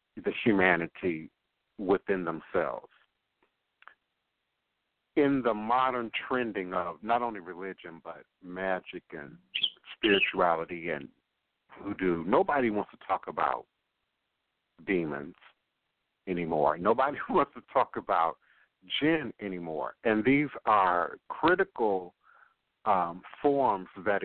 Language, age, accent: English, 60-79, American